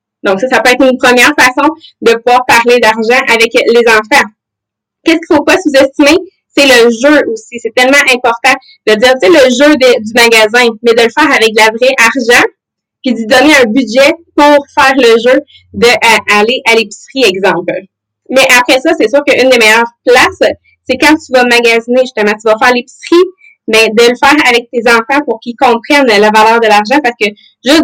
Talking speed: 205 wpm